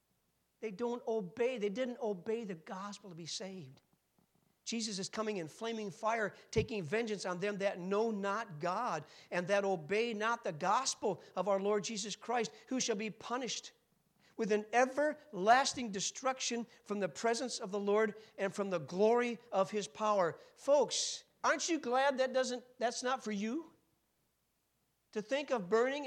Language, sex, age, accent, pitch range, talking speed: English, male, 50-69, American, 185-230 Hz, 165 wpm